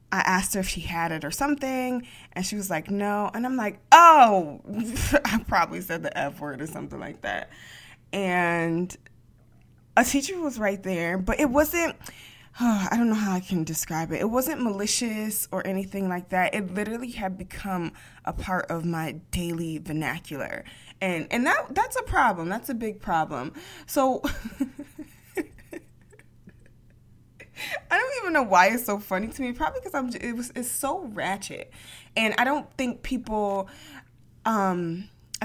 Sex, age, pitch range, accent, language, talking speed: female, 20-39, 165-230 Hz, American, English, 165 wpm